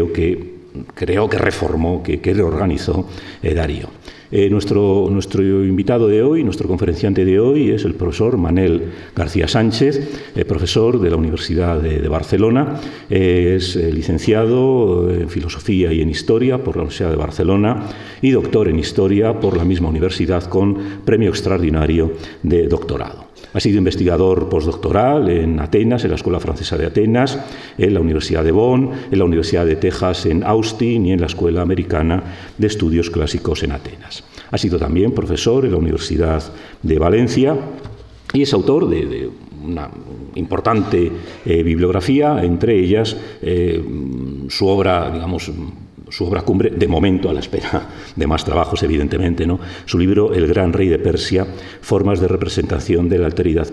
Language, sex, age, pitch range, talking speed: Spanish, male, 50-69, 85-100 Hz, 160 wpm